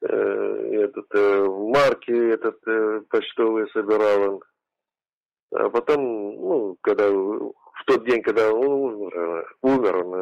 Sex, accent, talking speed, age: male, native, 115 wpm, 50-69